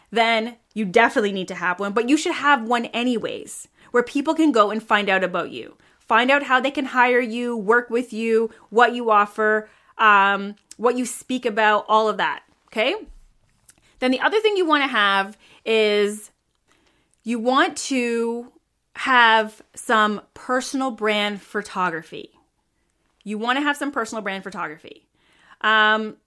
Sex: female